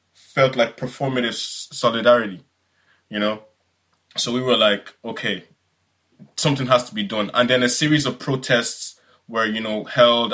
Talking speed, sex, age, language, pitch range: 150 wpm, male, 20-39, English, 115-140 Hz